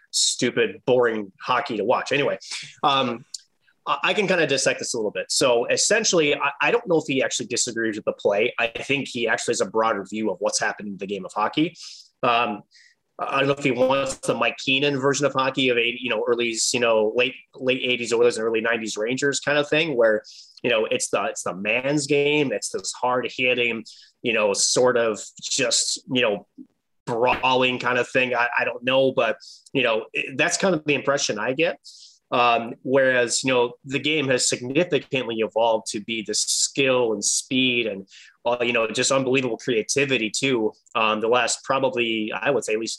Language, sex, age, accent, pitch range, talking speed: English, male, 20-39, American, 115-140 Hz, 200 wpm